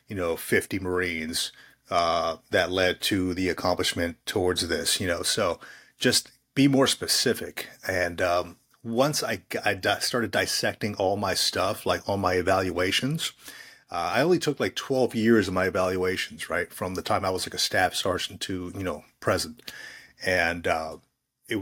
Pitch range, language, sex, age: 90-110 Hz, English, male, 30-49